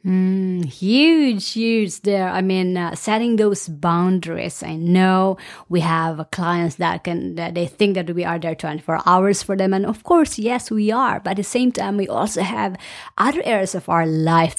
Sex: female